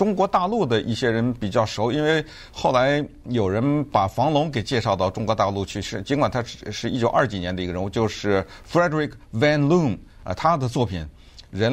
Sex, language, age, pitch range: male, Chinese, 50-69, 105-140 Hz